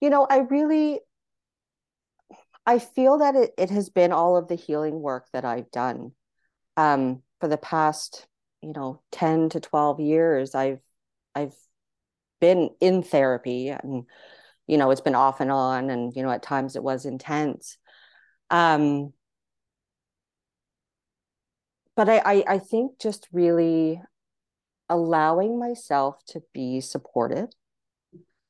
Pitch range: 135-185 Hz